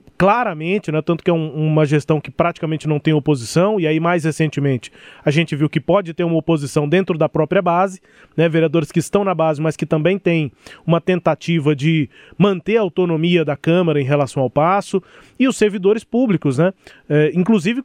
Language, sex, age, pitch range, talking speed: Portuguese, male, 20-39, 160-200 Hz, 195 wpm